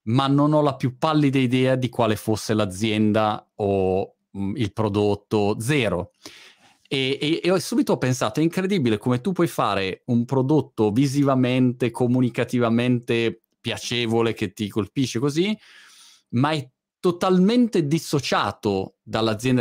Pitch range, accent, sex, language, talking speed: 110-140 Hz, native, male, Italian, 125 wpm